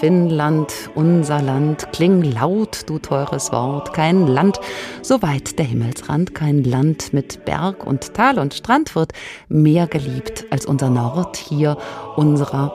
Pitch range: 140-180 Hz